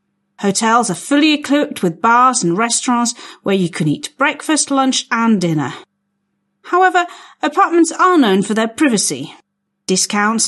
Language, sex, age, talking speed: Slovak, female, 40-59, 135 wpm